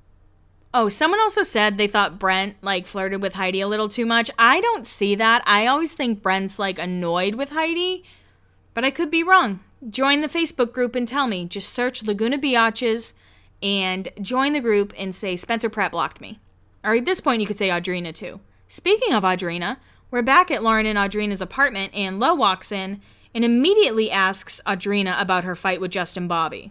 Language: English